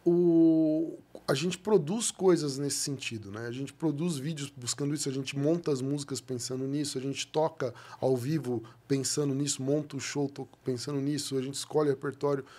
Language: Portuguese